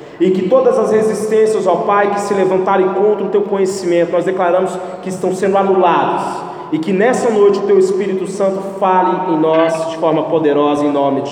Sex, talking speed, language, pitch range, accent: male, 195 wpm, Portuguese, 185-225 Hz, Brazilian